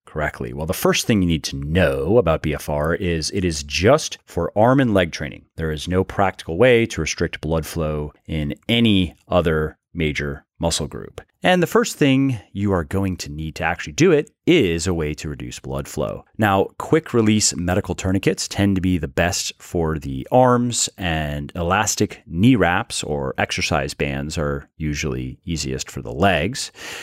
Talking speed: 180 wpm